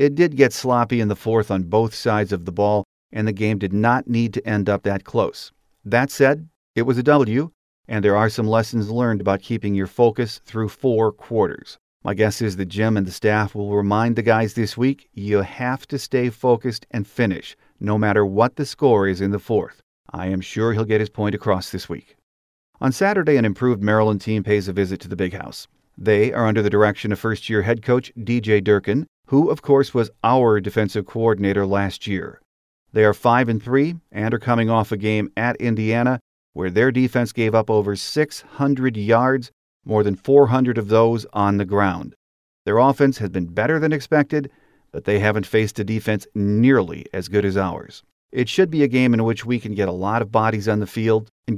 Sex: male